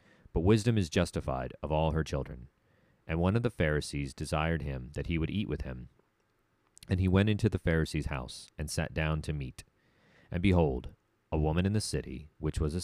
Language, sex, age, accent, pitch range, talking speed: English, male, 30-49, American, 75-95 Hz, 200 wpm